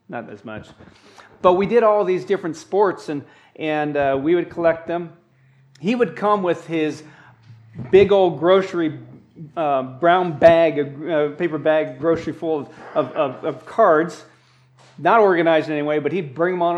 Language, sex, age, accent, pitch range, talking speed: English, male, 40-59, American, 150-185 Hz, 170 wpm